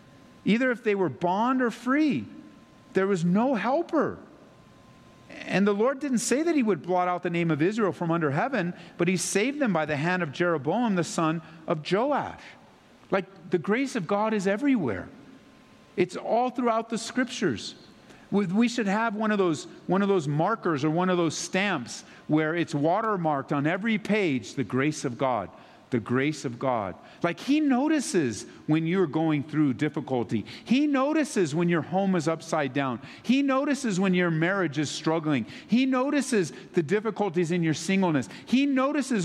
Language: English